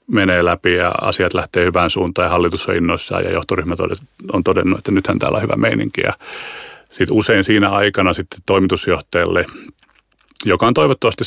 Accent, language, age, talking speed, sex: native, Finnish, 30-49, 165 wpm, male